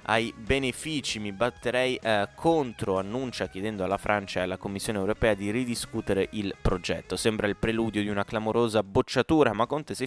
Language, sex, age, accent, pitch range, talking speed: Italian, male, 20-39, native, 100-120 Hz, 165 wpm